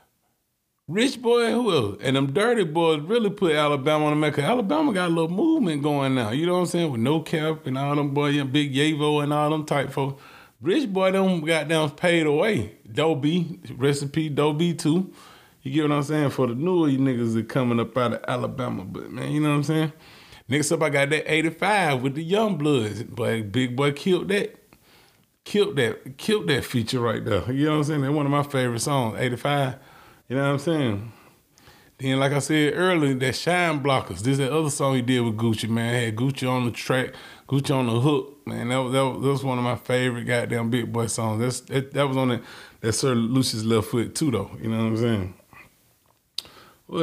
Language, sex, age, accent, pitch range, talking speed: English, male, 30-49, American, 120-155 Hz, 225 wpm